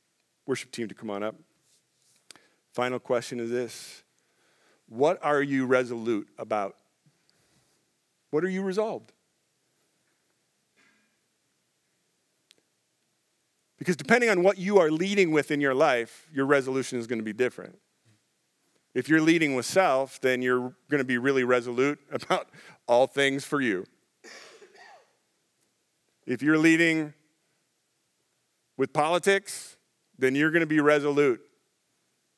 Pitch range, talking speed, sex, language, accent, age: 120-155 Hz, 115 wpm, male, English, American, 40-59